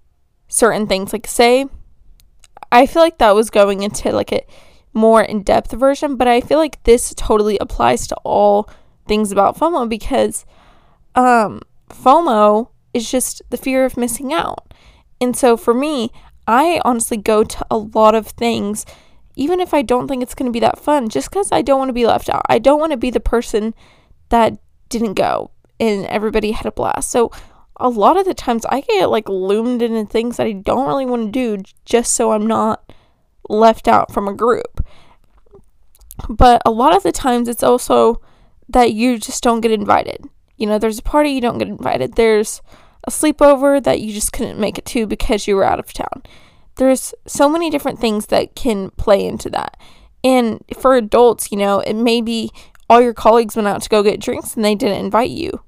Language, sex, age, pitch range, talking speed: English, female, 20-39, 220-260 Hz, 200 wpm